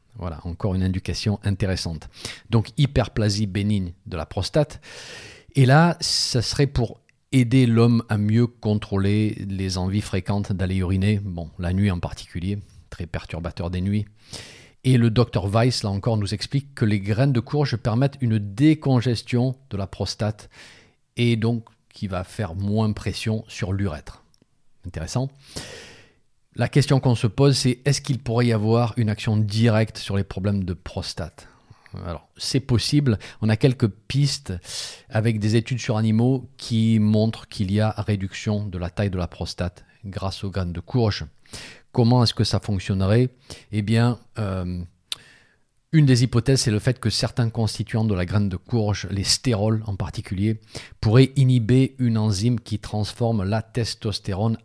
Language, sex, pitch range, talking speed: French, male, 100-120 Hz, 160 wpm